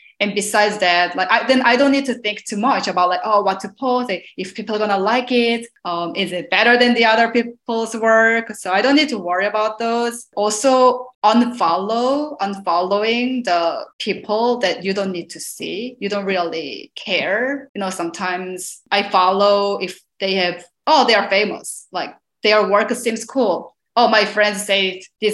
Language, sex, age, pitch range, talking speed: English, female, 20-39, 185-230 Hz, 190 wpm